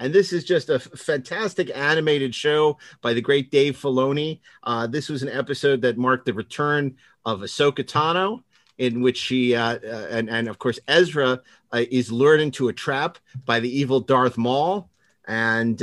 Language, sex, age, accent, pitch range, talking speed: English, male, 40-59, American, 115-140 Hz, 180 wpm